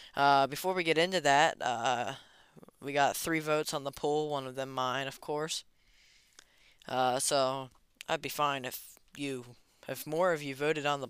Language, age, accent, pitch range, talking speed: English, 20-39, American, 130-150 Hz, 185 wpm